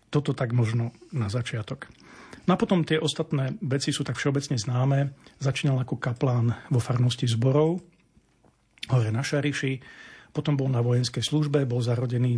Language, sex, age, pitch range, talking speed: Slovak, male, 40-59, 125-145 Hz, 150 wpm